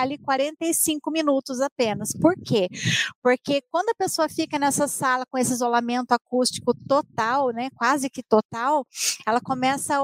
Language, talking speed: Portuguese, 150 wpm